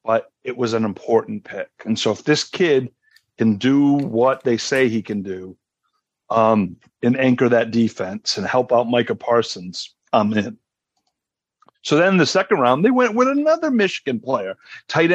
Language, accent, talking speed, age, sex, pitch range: English, American, 175 wpm, 40-59, male, 115-135 Hz